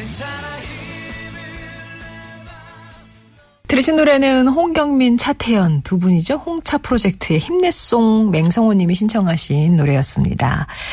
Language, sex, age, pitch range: Korean, female, 40-59, 150-230 Hz